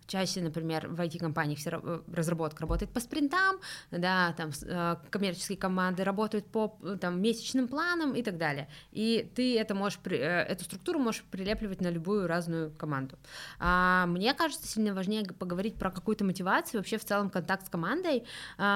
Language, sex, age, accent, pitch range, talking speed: Russian, female, 20-39, native, 165-210 Hz, 145 wpm